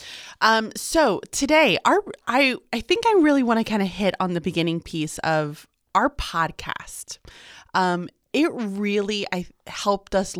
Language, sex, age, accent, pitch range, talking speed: English, female, 20-39, American, 165-220 Hz, 155 wpm